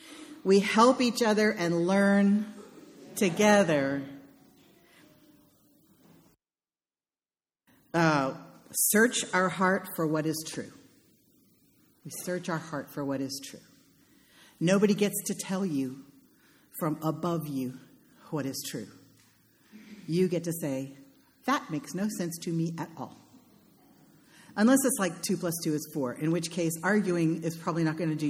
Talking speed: 135 wpm